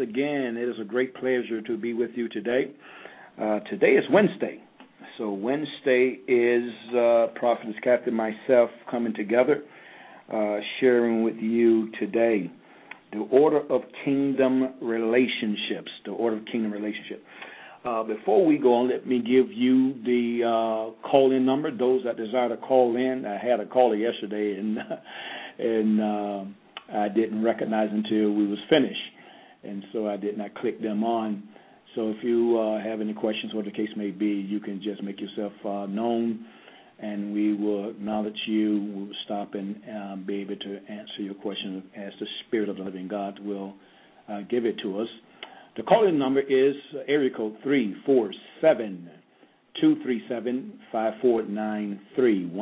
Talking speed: 155 wpm